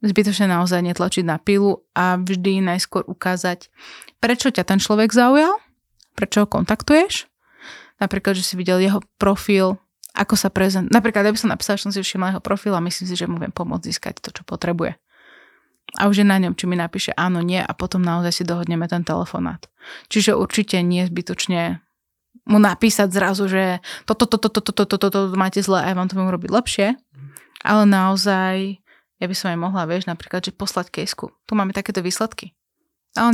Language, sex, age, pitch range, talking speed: Slovak, female, 20-39, 175-200 Hz, 185 wpm